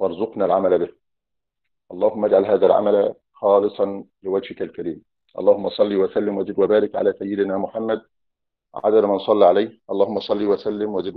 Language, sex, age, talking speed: Arabic, male, 50-69, 140 wpm